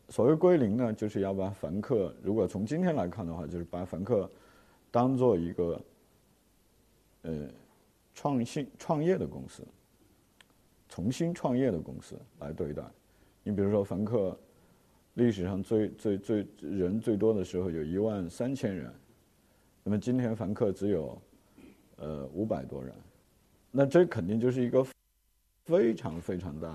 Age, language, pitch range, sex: 50-69, Chinese, 90-120 Hz, male